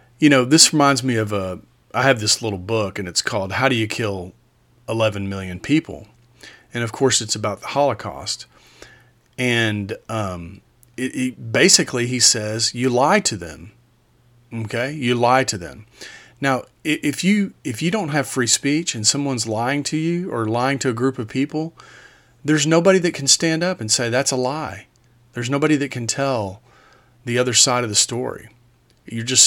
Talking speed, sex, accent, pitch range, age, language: 175 wpm, male, American, 110-135 Hz, 40-59, English